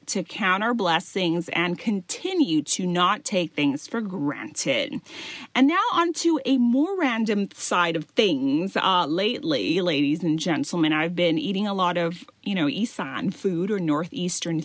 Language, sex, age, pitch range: Thai, female, 30-49, 170-260 Hz